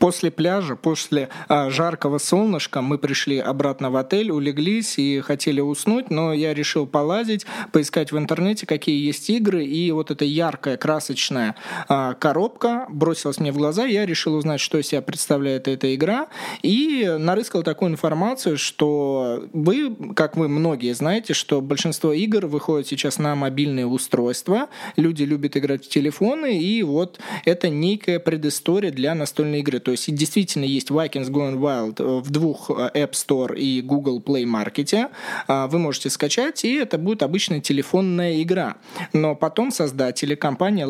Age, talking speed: 20-39, 150 wpm